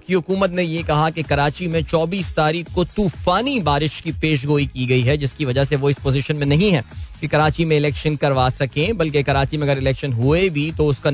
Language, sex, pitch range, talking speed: Hindi, male, 130-160 Hz, 225 wpm